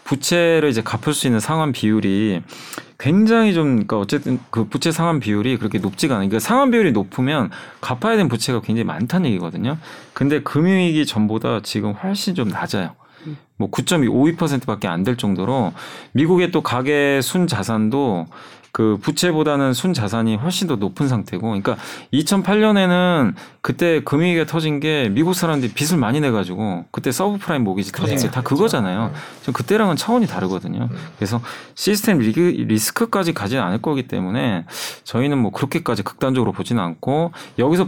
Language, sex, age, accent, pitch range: Korean, male, 40-59, native, 110-165 Hz